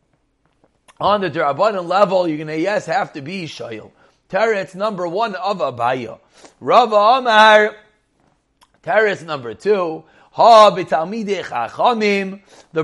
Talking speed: 115 wpm